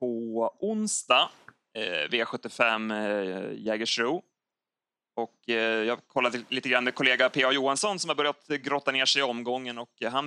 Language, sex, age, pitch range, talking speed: Swedish, male, 30-49, 115-135 Hz, 150 wpm